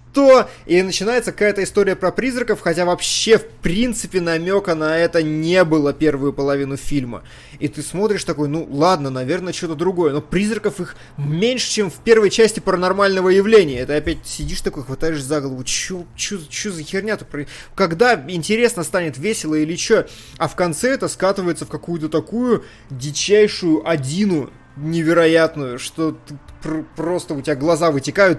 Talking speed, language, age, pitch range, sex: 150 wpm, Russian, 20-39, 150-195 Hz, male